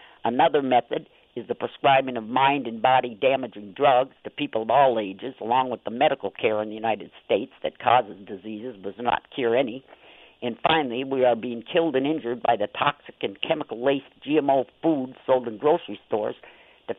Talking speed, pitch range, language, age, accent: 185 wpm, 115-140 Hz, English, 50-69, American